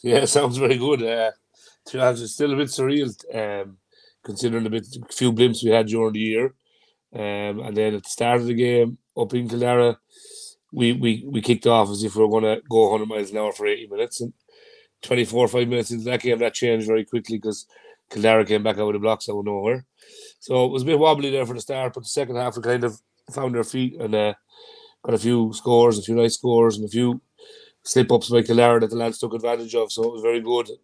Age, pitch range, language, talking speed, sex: 30-49, 110-130 Hz, English, 235 wpm, male